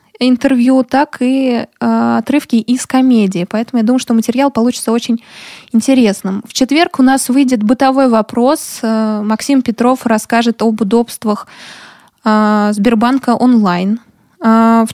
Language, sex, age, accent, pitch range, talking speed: Russian, female, 20-39, native, 220-255 Hz, 115 wpm